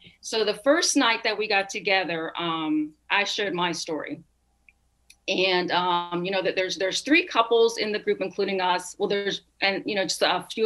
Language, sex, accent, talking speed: English, female, American, 195 wpm